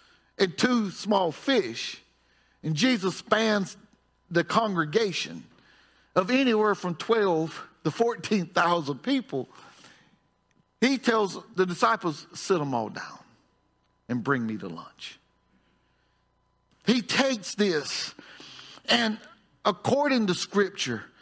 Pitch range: 175-260 Hz